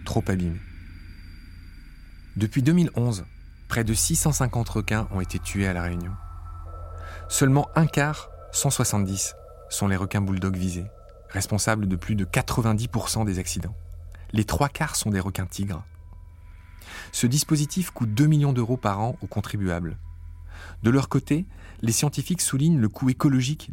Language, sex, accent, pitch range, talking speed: French, male, French, 85-125 Hz, 140 wpm